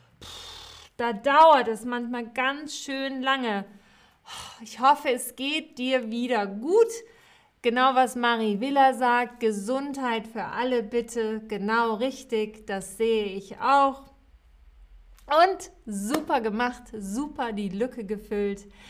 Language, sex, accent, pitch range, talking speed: German, female, German, 210-265 Hz, 115 wpm